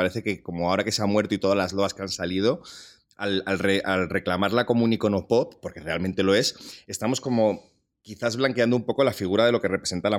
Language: Spanish